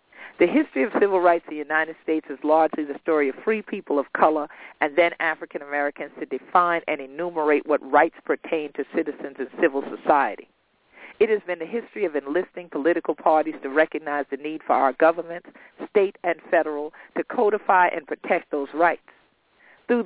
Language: English